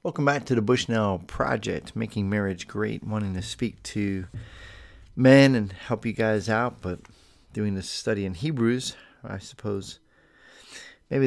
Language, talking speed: English, 150 wpm